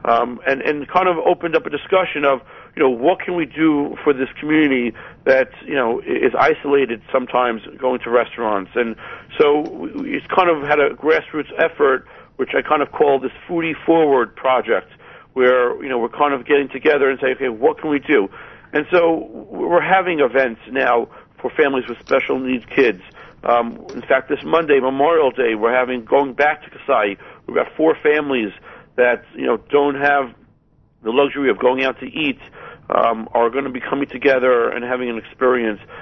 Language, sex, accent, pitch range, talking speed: English, male, American, 130-160 Hz, 190 wpm